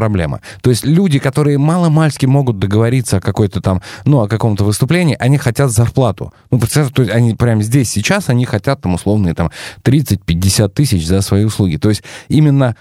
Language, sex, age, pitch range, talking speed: Russian, male, 20-39, 100-140 Hz, 175 wpm